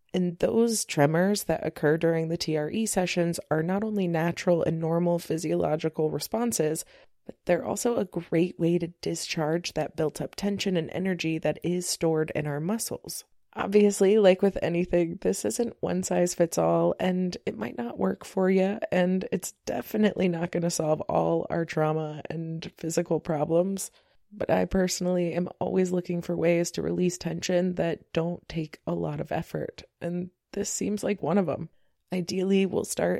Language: English